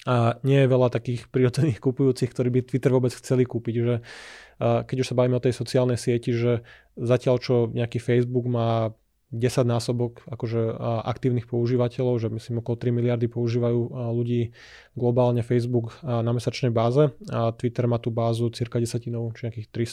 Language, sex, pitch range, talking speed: Slovak, male, 120-130 Hz, 165 wpm